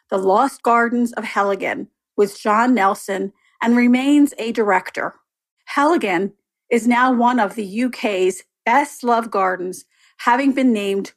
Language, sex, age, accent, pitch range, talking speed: English, female, 40-59, American, 205-255 Hz, 135 wpm